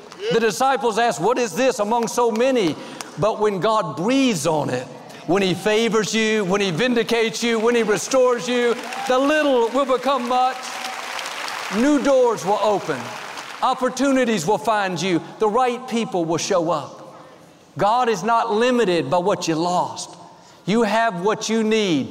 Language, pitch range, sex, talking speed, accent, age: English, 185-245 Hz, male, 160 wpm, American, 50-69